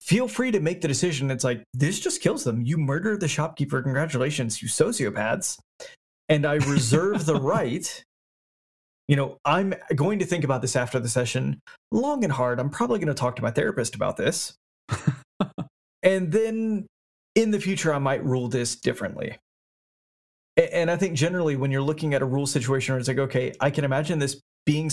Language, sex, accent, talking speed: English, male, American, 190 wpm